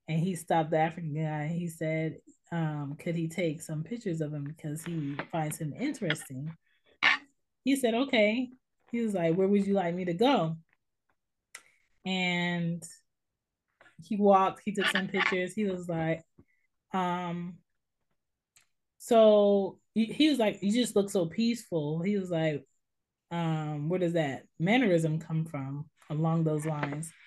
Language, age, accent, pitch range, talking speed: English, 20-39, American, 160-200 Hz, 145 wpm